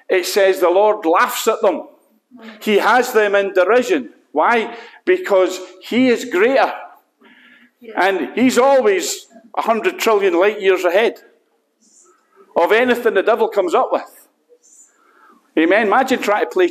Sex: male